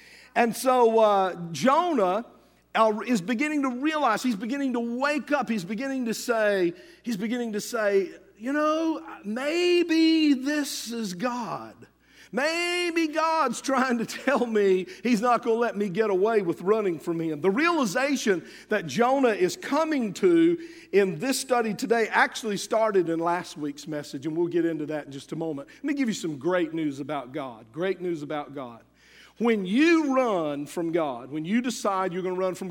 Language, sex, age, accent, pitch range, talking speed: English, male, 50-69, American, 165-245 Hz, 180 wpm